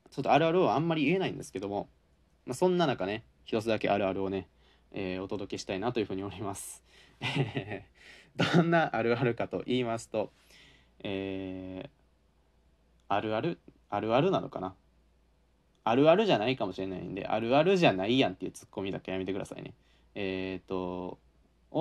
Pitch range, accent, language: 95-140 Hz, native, Japanese